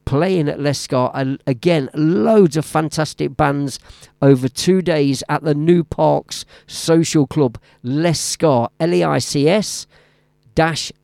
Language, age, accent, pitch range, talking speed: English, 50-69, British, 125-155 Hz, 145 wpm